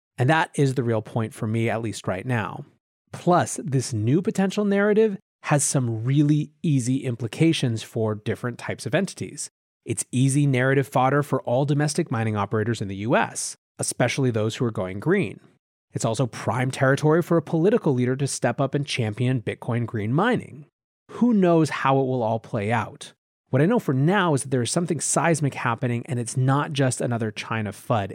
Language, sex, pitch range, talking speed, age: English, male, 115-150 Hz, 190 wpm, 30-49